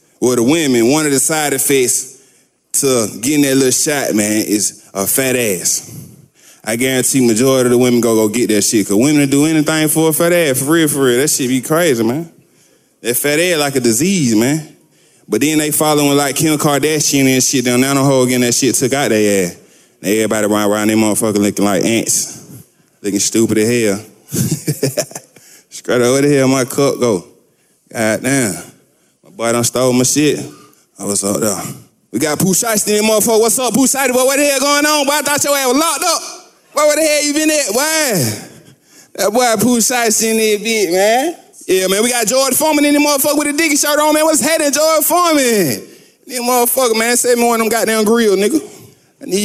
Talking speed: 210 wpm